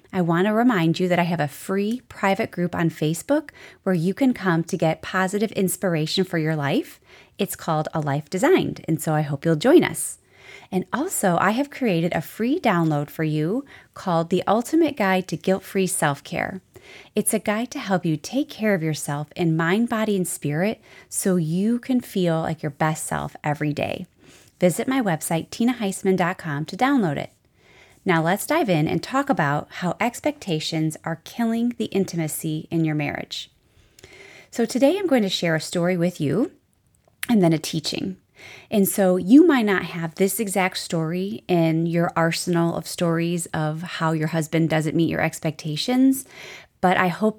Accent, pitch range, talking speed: American, 160-205 Hz, 180 wpm